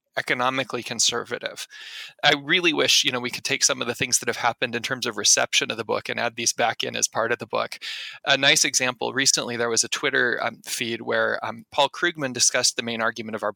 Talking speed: 240 wpm